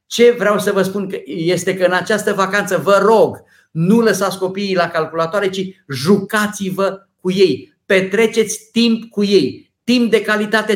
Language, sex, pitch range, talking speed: Romanian, male, 175-220 Hz, 155 wpm